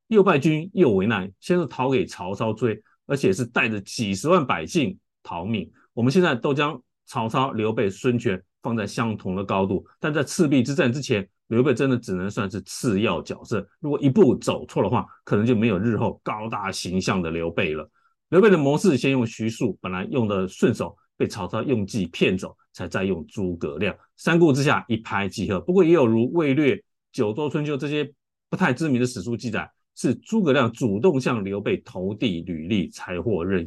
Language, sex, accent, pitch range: Chinese, male, native, 100-145 Hz